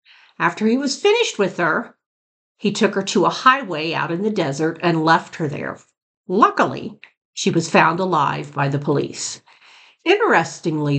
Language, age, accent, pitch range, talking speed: English, 50-69, American, 150-195 Hz, 160 wpm